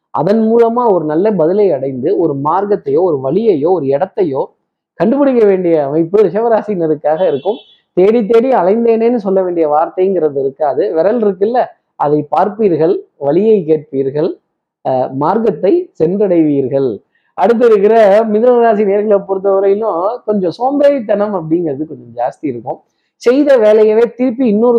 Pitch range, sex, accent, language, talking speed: 165-225 Hz, male, native, Tamil, 115 wpm